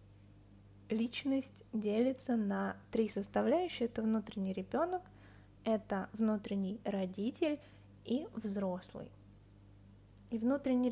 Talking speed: 80 wpm